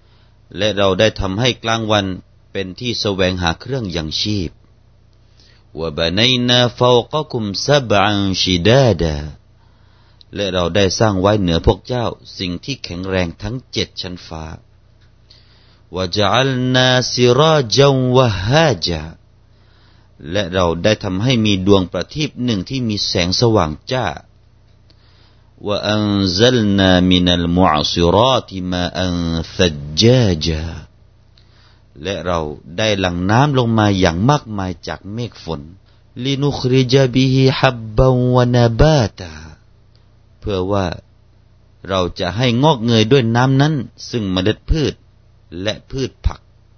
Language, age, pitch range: Thai, 30-49, 90-115 Hz